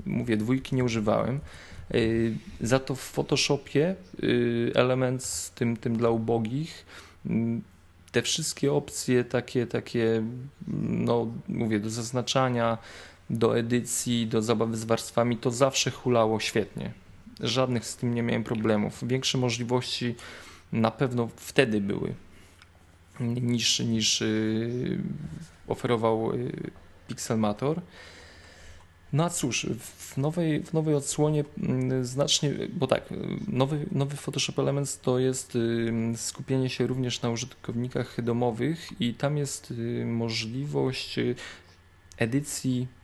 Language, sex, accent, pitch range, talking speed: Polish, male, native, 110-130 Hz, 110 wpm